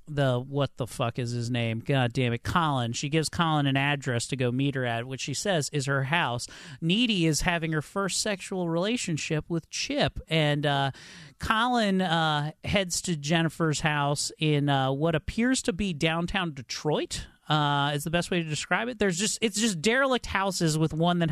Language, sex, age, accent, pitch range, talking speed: English, male, 40-59, American, 140-190 Hz, 195 wpm